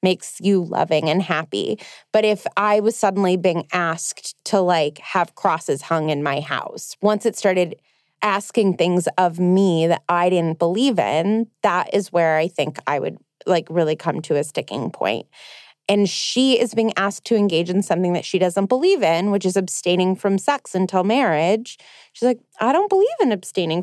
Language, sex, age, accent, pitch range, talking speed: English, female, 20-39, American, 175-215 Hz, 185 wpm